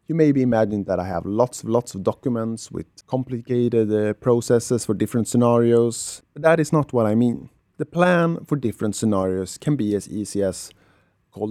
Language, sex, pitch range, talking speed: English, male, 105-140 Hz, 190 wpm